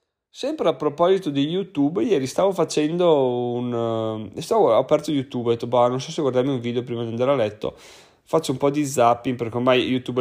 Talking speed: 205 wpm